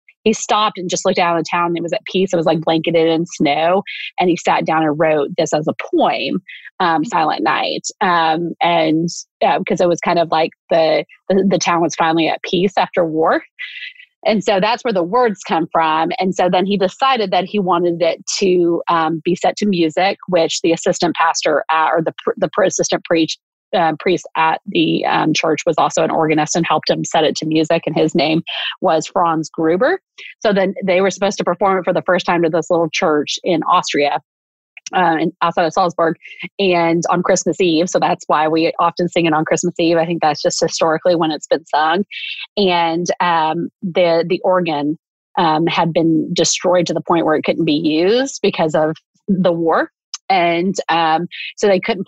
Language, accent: English, American